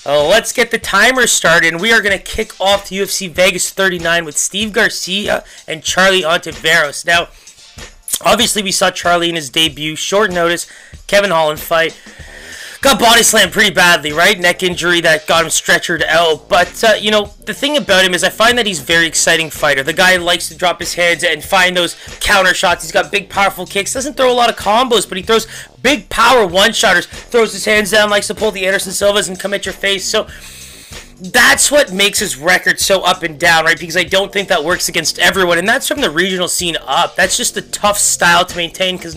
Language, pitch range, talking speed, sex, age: English, 170-205 Hz, 220 wpm, male, 30-49